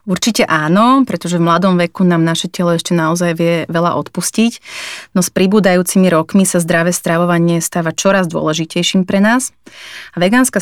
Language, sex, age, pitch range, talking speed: Slovak, female, 30-49, 170-190 Hz, 160 wpm